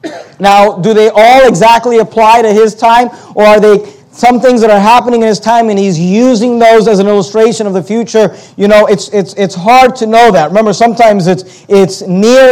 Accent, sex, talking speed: American, male, 210 wpm